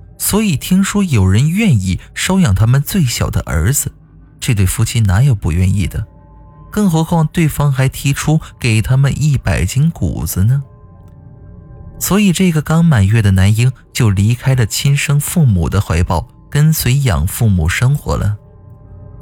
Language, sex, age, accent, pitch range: Chinese, male, 20-39, native, 100-160 Hz